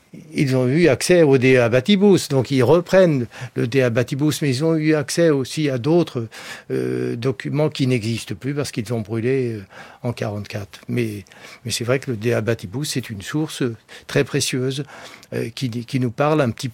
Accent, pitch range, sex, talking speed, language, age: French, 120-150 Hz, male, 185 wpm, French, 60-79